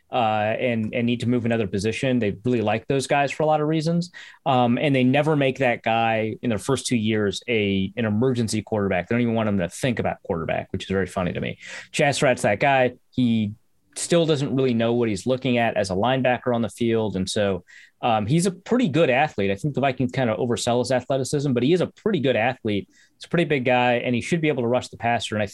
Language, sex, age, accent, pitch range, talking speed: English, male, 30-49, American, 105-130 Hz, 255 wpm